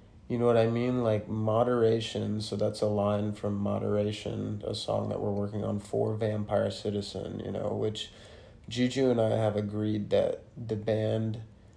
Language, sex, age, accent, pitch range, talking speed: English, male, 20-39, American, 105-115 Hz, 170 wpm